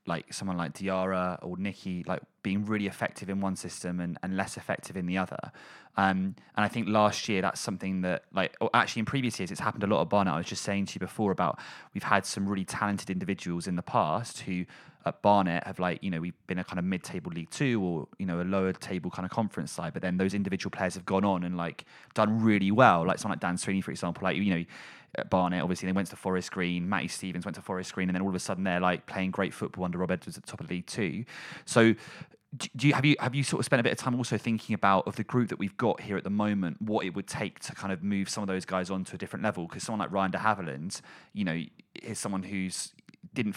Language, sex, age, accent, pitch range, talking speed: English, male, 20-39, British, 90-105 Hz, 275 wpm